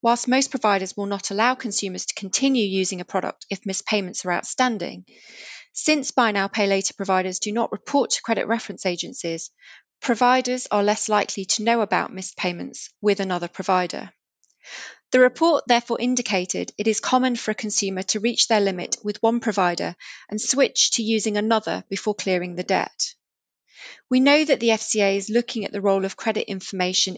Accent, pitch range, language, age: British, 190-230 Hz, English, 30-49